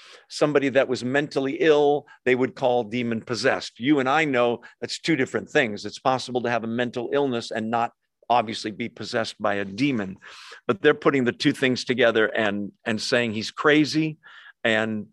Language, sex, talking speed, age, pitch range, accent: English, male, 180 wpm, 50-69, 115-155 Hz, American